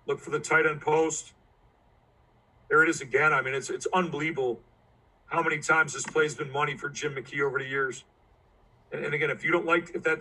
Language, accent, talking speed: English, American, 210 wpm